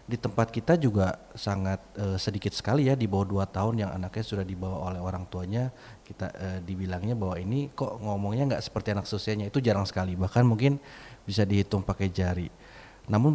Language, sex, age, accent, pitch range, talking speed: Indonesian, male, 30-49, native, 100-120 Hz, 185 wpm